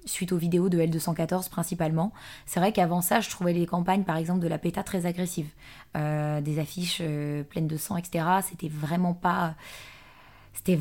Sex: female